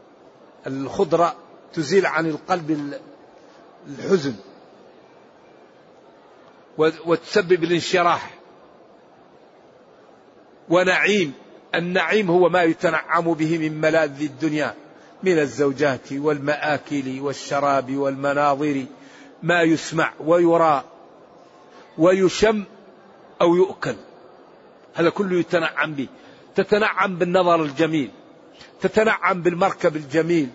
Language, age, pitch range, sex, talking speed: Arabic, 50-69, 155-195 Hz, male, 75 wpm